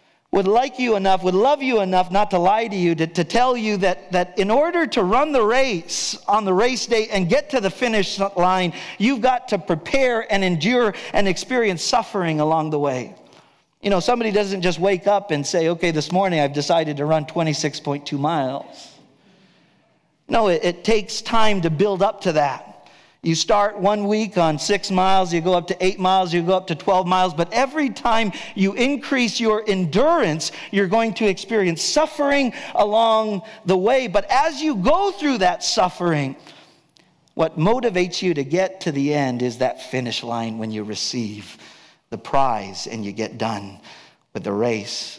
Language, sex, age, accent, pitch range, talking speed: English, male, 50-69, American, 155-215 Hz, 185 wpm